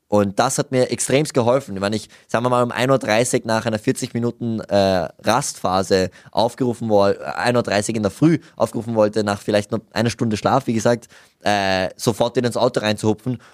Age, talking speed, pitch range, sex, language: 20-39, 185 wpm, 110-135 Hz, male, German